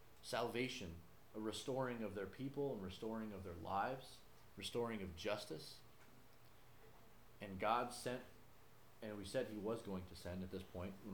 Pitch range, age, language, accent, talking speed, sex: 95-115 Hz, 30-49, English, American, 155 wpm, male